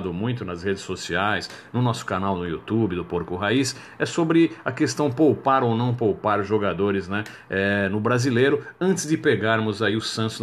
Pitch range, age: 105-130 Hz, 50-69